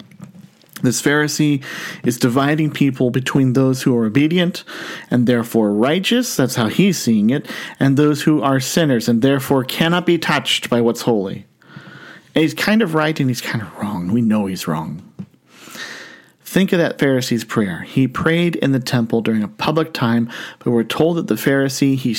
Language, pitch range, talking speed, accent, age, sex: English, 125-160 Hz, 175 wpm, American, 40-59, male